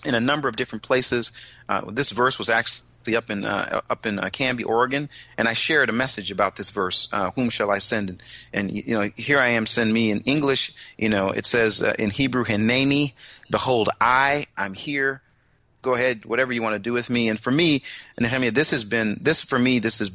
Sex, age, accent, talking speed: male, 30-49, American, 225 wpm